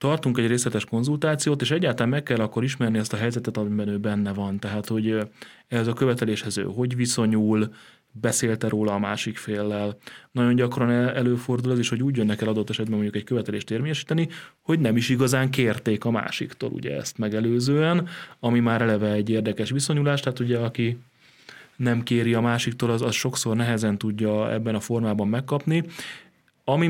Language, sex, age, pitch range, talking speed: Hungarian, male, 30-49, 110-125 Hz, 175 wpm